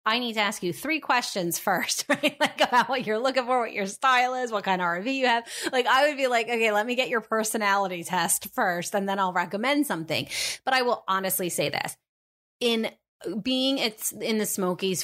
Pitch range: 180-230 Hz